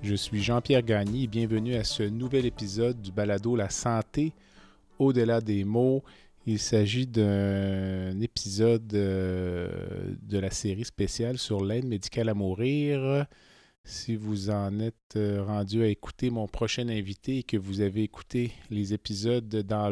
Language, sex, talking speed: French, male, 145 wpm